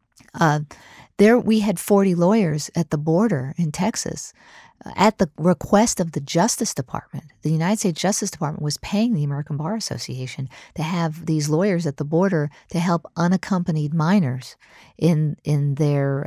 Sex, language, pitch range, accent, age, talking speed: female, English, 150-175 Hz, American, 50-69, 160 wpm